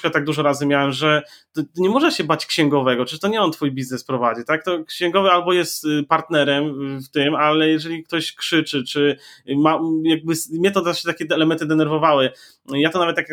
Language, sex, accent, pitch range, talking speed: Polish, male, native, 150-185 Hz, 190 wpm